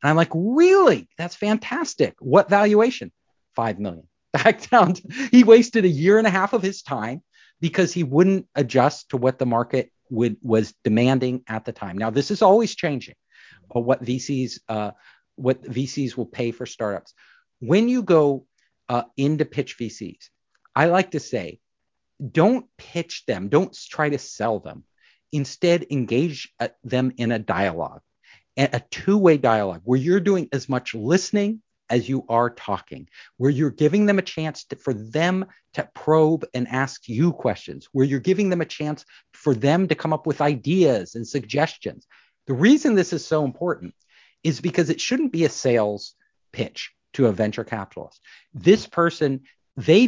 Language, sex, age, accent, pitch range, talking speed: English, male, 50-69, American, 120-175 Hz, 170 wpm